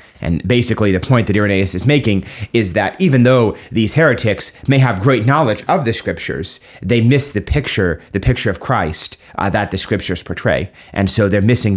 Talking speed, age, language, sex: 195 wpm, 30-49, English, male